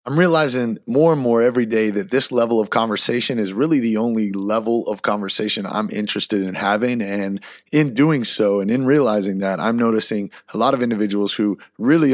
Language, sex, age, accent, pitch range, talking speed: English, male, 30-49, American, 105-130 Hz, 195 wpm